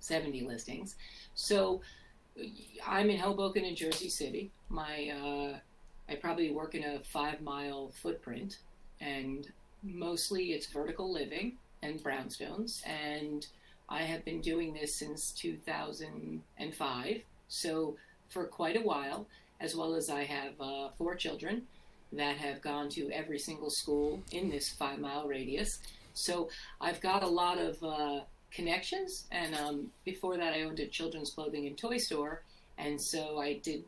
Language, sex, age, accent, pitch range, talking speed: English, female, 40-59, American, 145-170 Hz, 145 wpm